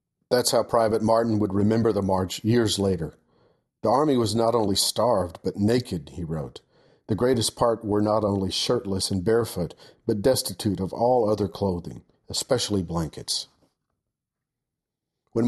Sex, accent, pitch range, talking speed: male, American, 100-120 Hz, 145 wpm